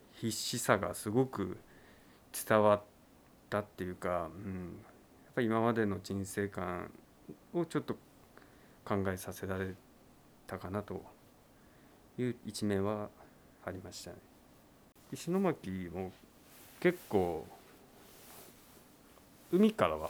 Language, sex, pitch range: Japanese, male, 95-120 Hz